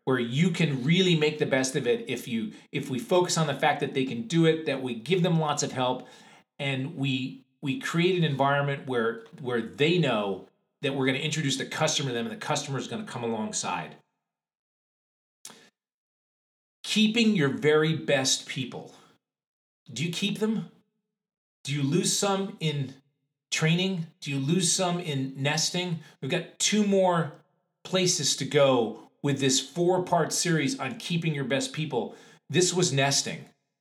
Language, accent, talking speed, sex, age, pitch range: English, American, 170 wpm, male, 40-59, 135-175 Hz